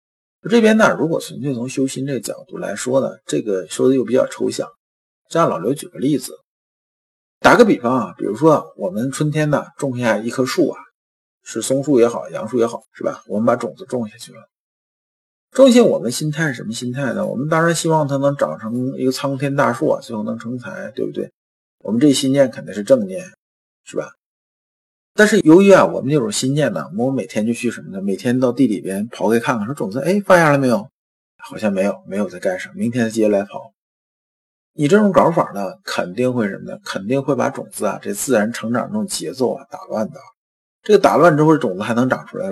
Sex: male